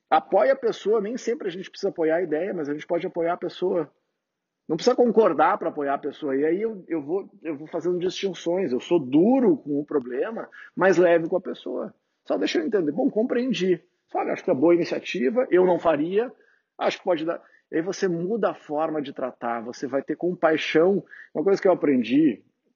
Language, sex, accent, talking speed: Portuguese, male, Brazilian, 215 wpm